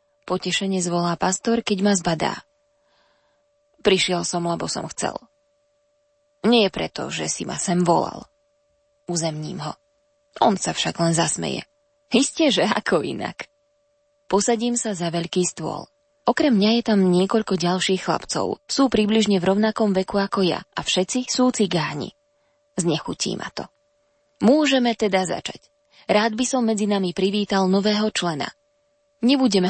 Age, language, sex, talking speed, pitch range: 20-39, Slovak, female, 135 wpm, 185-285 Hz